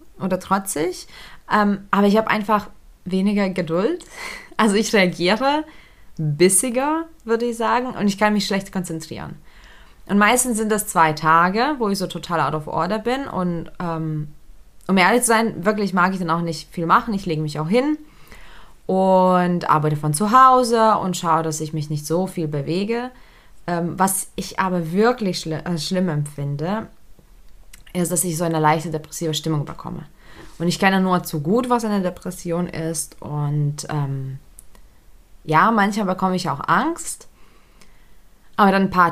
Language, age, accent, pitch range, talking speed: German, 20-39, German, 165-210 Hz, 165 wpm